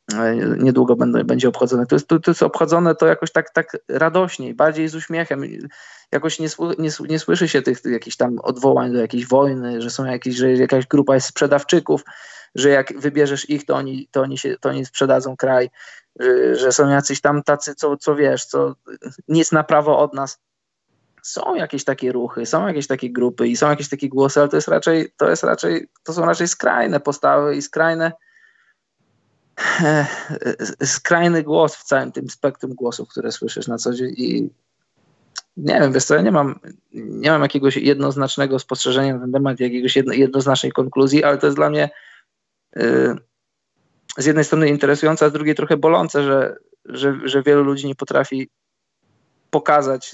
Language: Polish